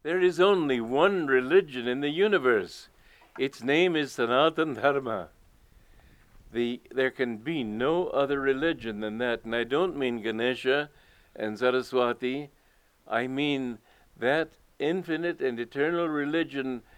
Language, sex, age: English, male, 60-79